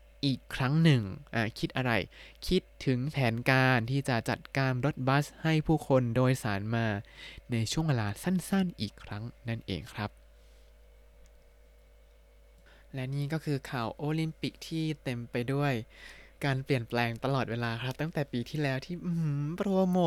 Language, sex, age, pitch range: Thai, male, 20-39, 115-150 Hz